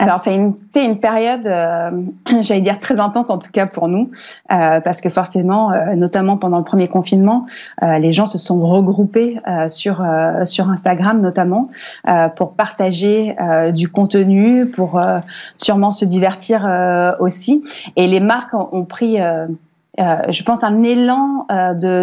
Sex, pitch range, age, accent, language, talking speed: female, 185-235 Hz, 20-39, French, French, 170 wpm